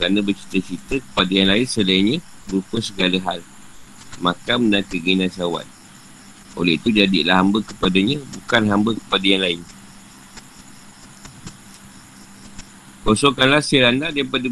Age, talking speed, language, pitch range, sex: 50-69, 110 wpm, Malay, 95-115 Hz, male